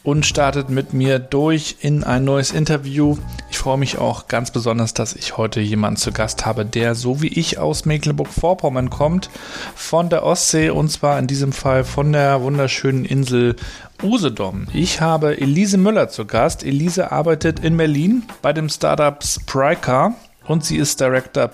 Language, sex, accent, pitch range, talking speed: German, male, German, 120-150 Hz, 165 wpm